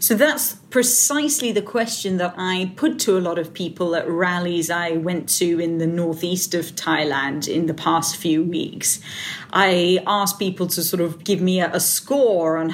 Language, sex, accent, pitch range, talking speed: English, female, British, 165-195 Hz, 185 wpm